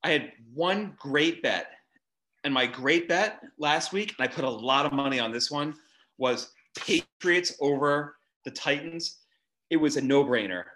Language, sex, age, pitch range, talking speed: English, male, 30-49, 125-155 Hz, 175 wpm